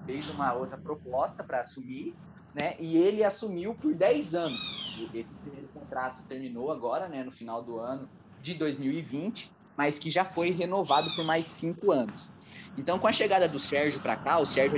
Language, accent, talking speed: Portuguese, Brazilian, 180 wpm